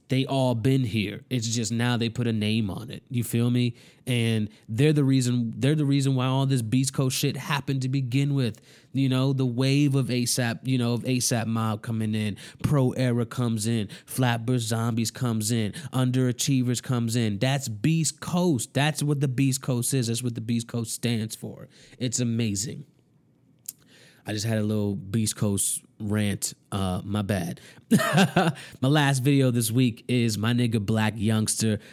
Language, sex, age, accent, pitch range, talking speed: English, male, 20-39, American, 115-140 Hz, 180 wpm